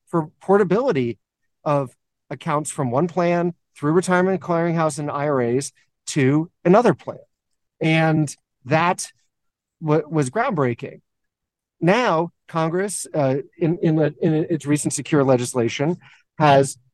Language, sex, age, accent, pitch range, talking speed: English, male, 40-59, American, 135-170 Hz, 100 wpm